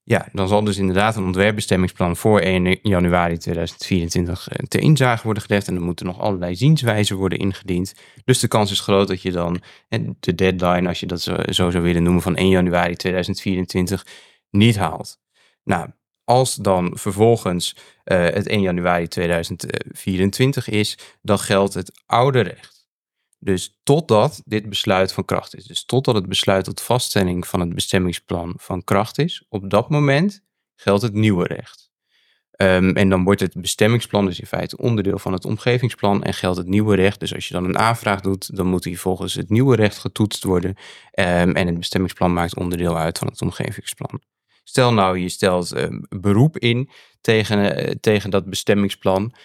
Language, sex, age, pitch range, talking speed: Dutch, male, 20-39, 90-105 Hz, 175 wpm